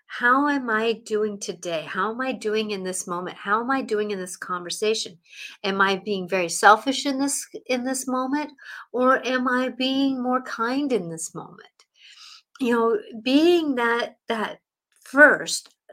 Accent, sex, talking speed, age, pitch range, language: American, female, 165 wpm, 50-69, 200-255 Hz, English